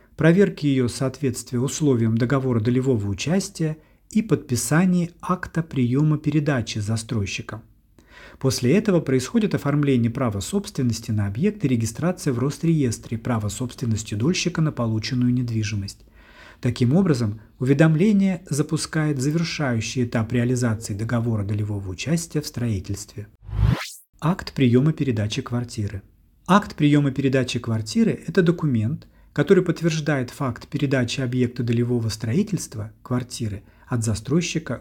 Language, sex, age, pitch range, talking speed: Russian, male, 40-59, 115-155 Hz, 110 wpm